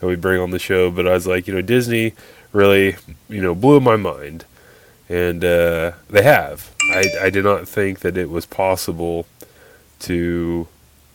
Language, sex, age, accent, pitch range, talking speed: English, male, 20-39, American, 85-105 Hz, 180 wpm